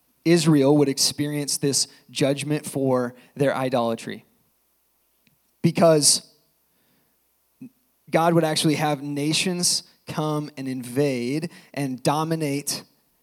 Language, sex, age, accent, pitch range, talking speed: English, male, 20-39, American, 130-155 Hz, 85 wpm